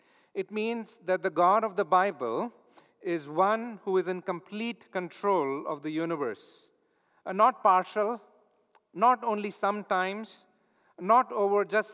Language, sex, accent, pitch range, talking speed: English, male, Indian, 180-215 Hz, 135 wpm